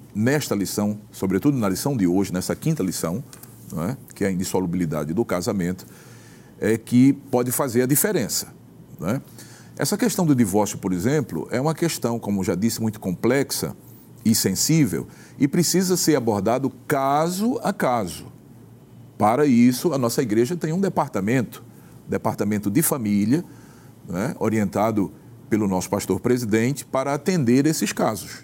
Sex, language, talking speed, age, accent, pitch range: male, Portuguese, 150 wpm, 40-59, Brazilian, 105-145 Hz